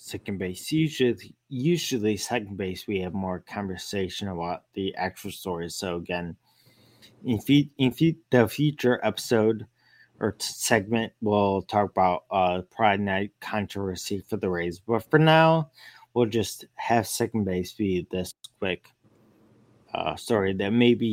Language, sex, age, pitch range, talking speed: English, male, 20-39, 100-130 Hz, 145 wpm